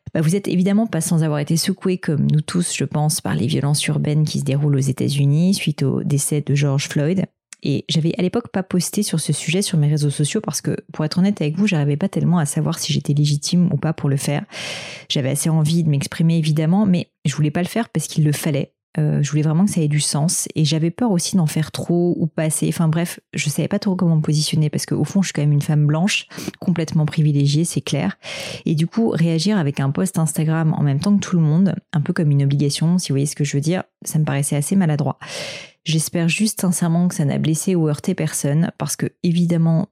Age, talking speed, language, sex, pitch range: 30-49, 250 wpm, French, female, 150-175 Hz